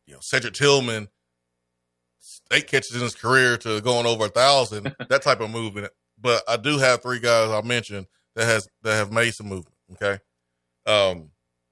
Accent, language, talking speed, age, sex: American, English, 180 wpm, 20-39, male